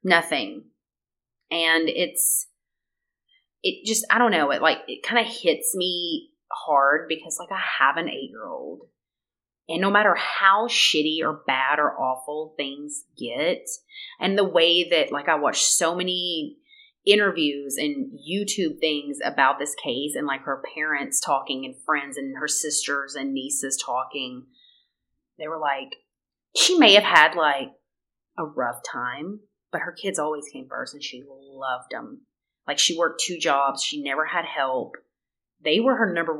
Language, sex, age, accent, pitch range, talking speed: English, female, 30-49, American, 150-235 Hz, 160 wpm